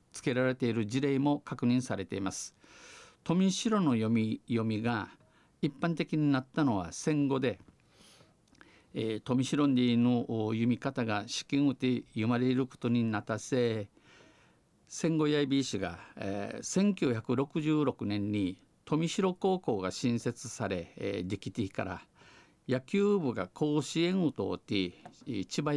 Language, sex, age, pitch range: Japanese, male, 50-69, 110-145 Hz